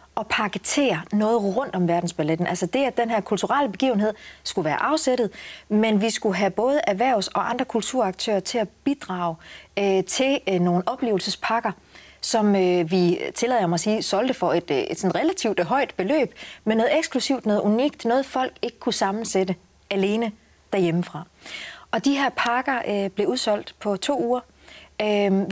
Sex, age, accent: female, 30-49, native